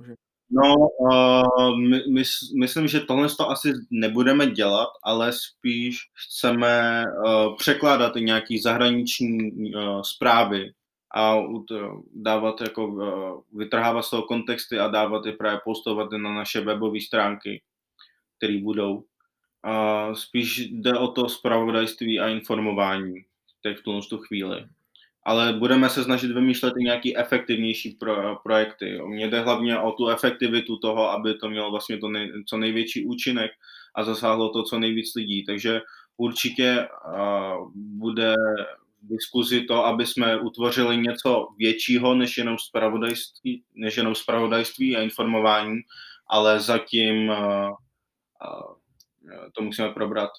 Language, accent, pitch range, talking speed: Czech, native, 110-120 Hz, 130 wpm